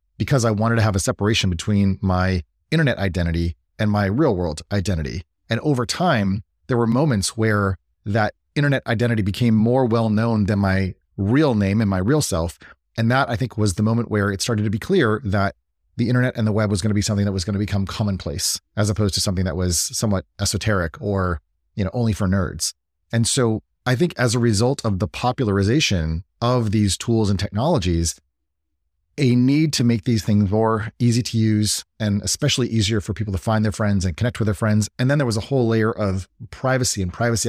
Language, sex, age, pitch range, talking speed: English, male, 30-49, 95-120 Hz, 210 wpm